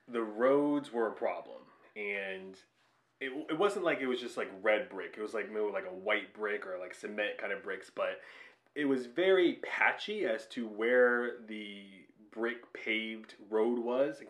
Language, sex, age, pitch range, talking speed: English, male, 30-49, 105-125 Hz, 185 wpm